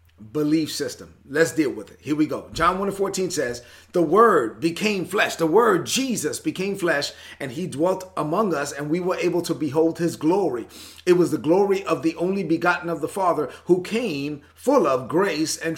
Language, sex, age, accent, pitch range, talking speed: English, male, 30-49, American, 145-175 Hz, 200 wpm